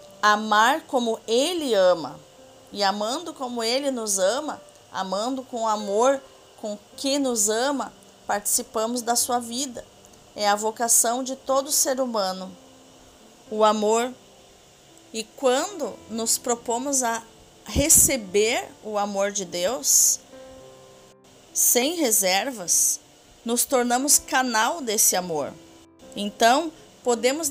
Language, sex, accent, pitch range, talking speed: Portuguese, female, Brazilian, 205-260 Hz, 110 wpm